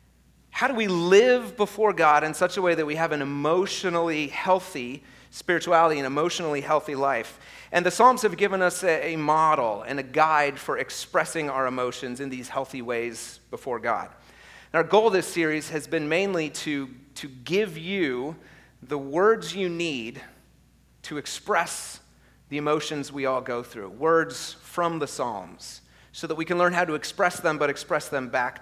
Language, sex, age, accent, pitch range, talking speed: English, male, 30-49, American, 140-185 Hz, 170 wpm